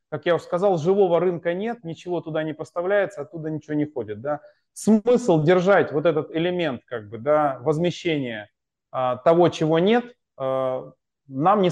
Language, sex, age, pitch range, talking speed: Russian, male, 20-39, 145-180 Hz, 165 wpm